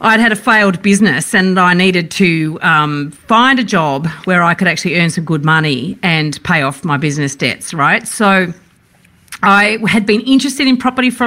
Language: English